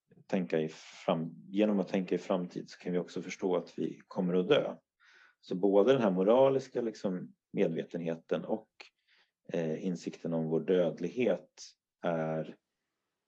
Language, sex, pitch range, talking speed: Swedish, male, 80-95 Hz, 145 wpm